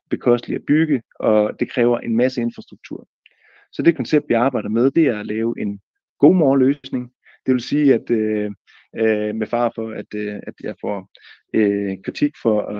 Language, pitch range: Danish, 110-150 Hz